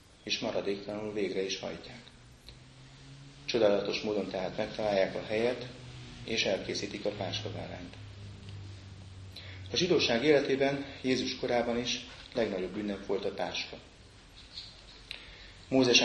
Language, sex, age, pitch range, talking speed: Hungarian, male, 30-49, 95-120 Hz, 100 wpm